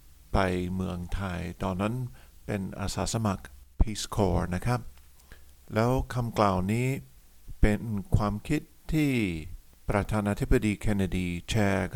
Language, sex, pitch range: Thai, male, 90-115 Hz